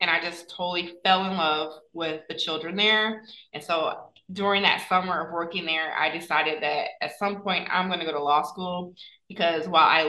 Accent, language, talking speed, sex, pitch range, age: American, English, 210 wpm, female, 160-190 Hz, 20-39